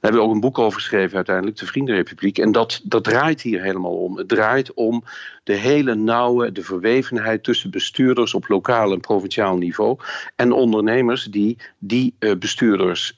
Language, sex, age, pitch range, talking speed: Dutch, male, 50-69, 105-120 Hz, 175 wpm